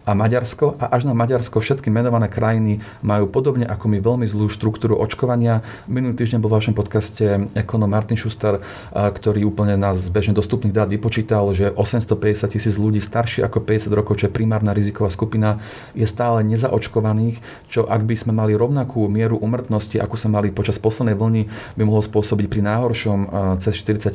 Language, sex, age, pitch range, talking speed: Slovak, male, 40-59, 105-115 Hz, 175 wpm